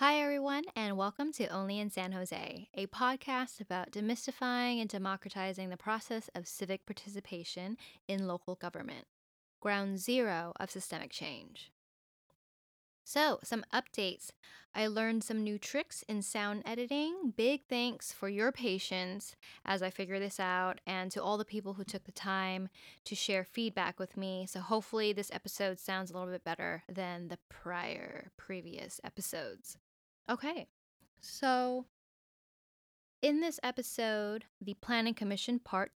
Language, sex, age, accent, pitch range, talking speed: English, female, 10-29, American, 190-235 Hz, 145 wpm